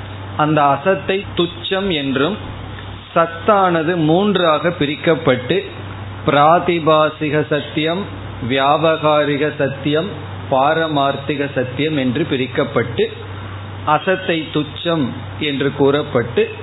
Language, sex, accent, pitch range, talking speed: Tamil, male, native, 110-165 Hz, 70 wpm